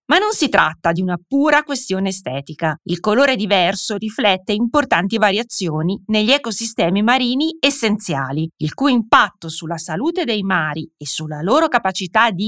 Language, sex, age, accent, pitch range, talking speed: Italian, female, 30-49, native, 175-265 Hz, 150 wpm